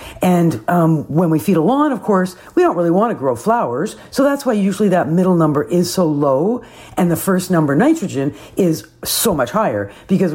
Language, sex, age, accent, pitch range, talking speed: English, female, 50-69, American, 155-195 Hz, 210 wpm